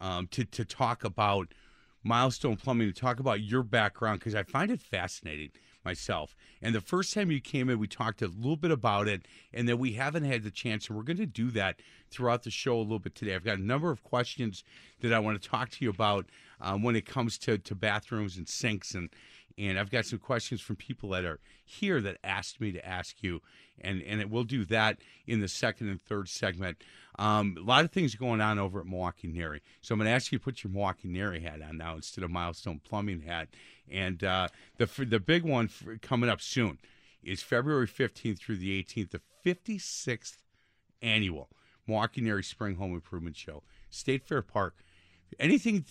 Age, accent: 50-69, American